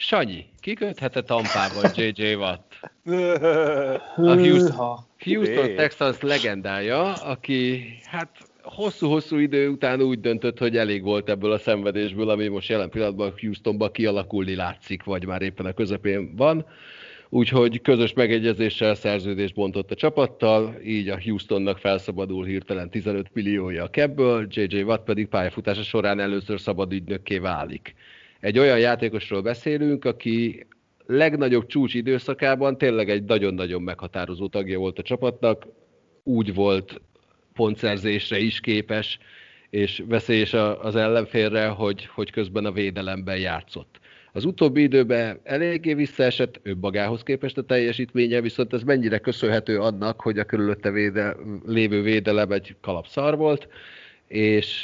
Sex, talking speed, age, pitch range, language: male, 125 wpm, 30-49, 100-125 Hz, Hungarian